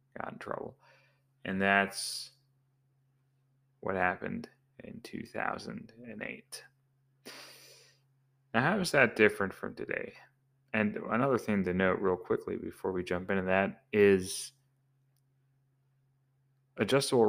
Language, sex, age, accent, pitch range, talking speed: English, male, 30-49, American, 100-135 Hz, 105 wpm